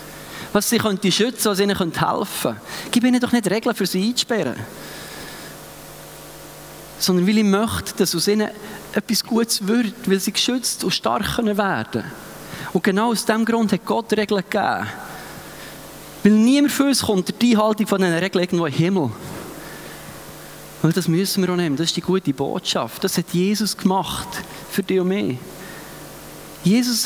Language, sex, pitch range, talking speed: German, male, 195-235 Hz, 165 wpm